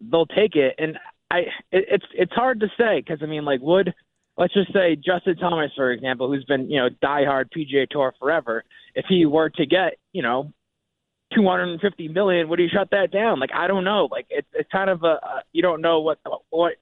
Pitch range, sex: 140-175 Hz, male